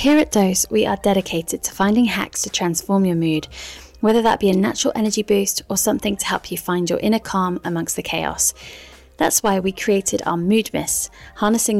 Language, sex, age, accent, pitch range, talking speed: English, female, 20-39, British, 175-220 Hz, 205 wpm